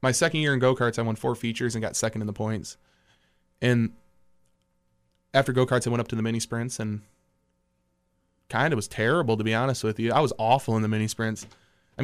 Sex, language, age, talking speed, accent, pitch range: male, English, 20-39, 215 wpm, American, 110-130 Hz